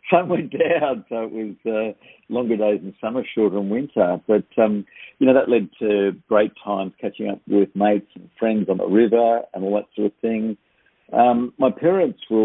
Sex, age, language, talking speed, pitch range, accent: male, 50-69, English, 205 wpm, 95-120 Hz, Australian